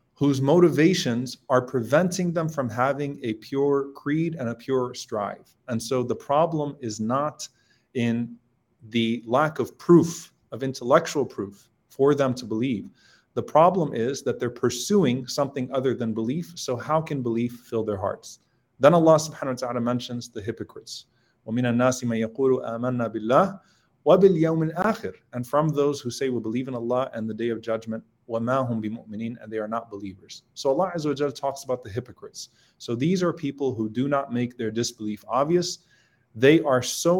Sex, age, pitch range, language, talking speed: male, 30-49, 120-150 Hz, English, 155 wpm